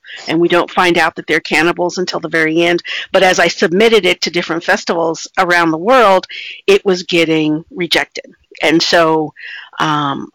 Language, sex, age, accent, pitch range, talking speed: English, female, 50-69, American, 160-190 Hz, 175 wpm